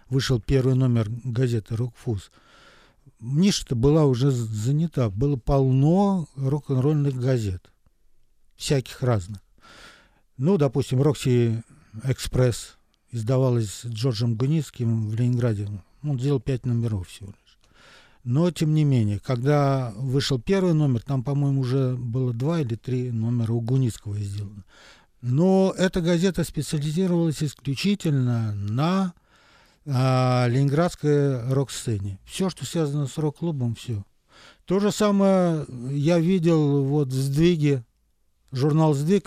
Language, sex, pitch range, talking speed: Russian, male, 120-150 Hz, 120 wpm